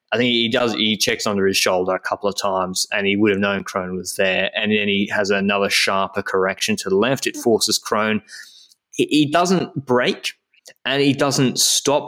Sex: male